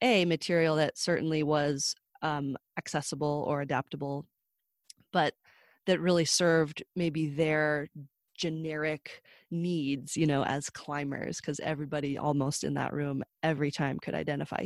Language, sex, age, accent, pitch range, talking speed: English, female, 20-39, American, 150-175 Hz, 125 wpm